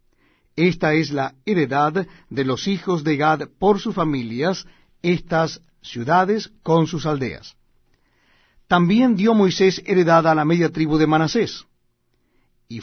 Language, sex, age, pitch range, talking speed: Spanish, male, 60-79, 135-180 Hz, 130 wpm